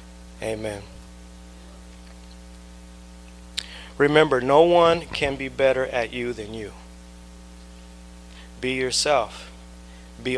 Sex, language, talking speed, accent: male, English, 80 wpm, American